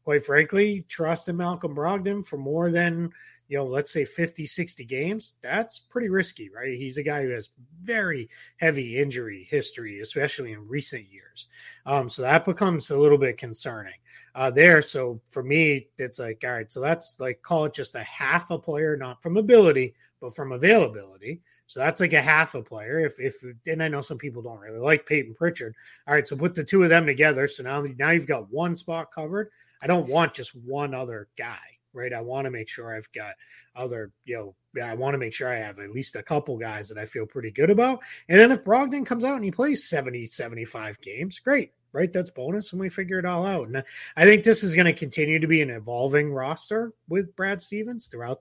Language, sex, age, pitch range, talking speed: English, male, 30-49, 130-185 Hz, 220 wpm